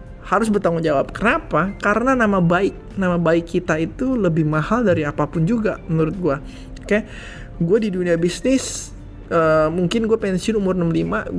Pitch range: 160-205 Hz